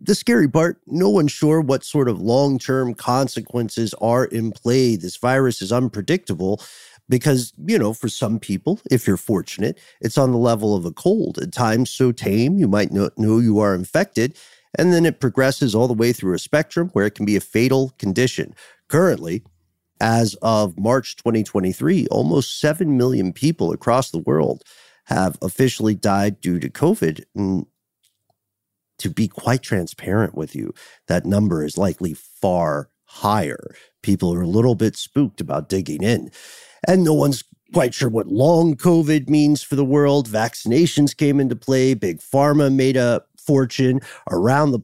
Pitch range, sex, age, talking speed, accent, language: 105-140 Hz, male, 50-69, 165 wpm, American, English